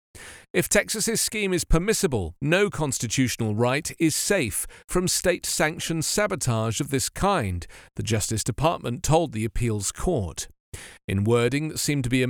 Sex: male